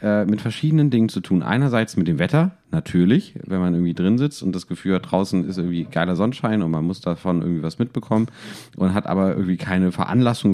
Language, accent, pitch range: German, German, 90-120 Hz